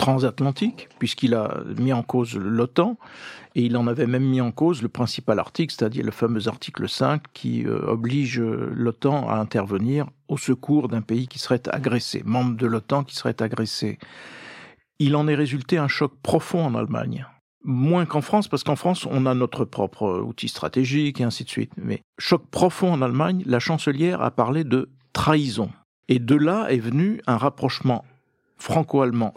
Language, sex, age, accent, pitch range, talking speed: French, male, 50-69, French, 120-150 Hz, 175 wpm